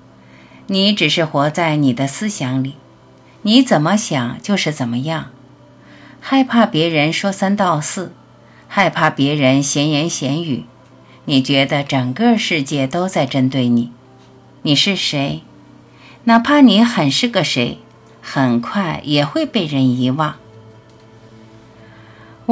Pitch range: 125-185 Hz